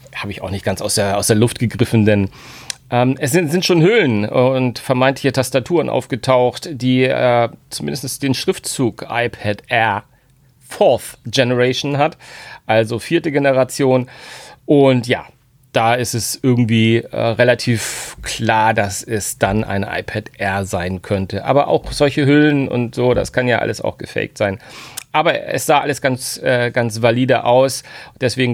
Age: 40-59